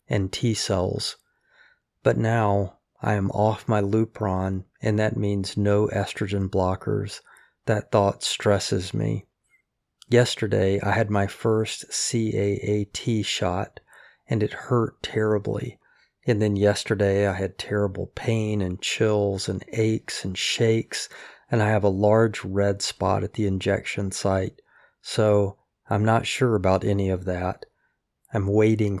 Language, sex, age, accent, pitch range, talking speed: English, male, 40-59, American, 100-110 Hz, 135 wpm